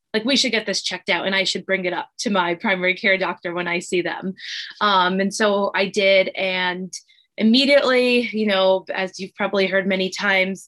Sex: female